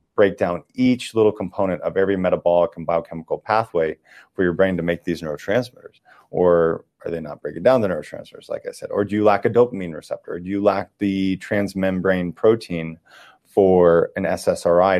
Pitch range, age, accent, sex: 85-105 Hz, 30-49, American, male